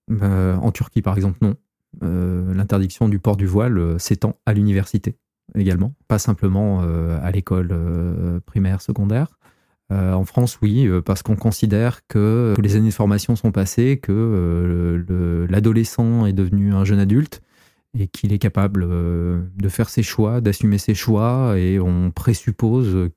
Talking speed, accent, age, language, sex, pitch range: 160 wpm, French, 20-39, French, male, 95-115 Hz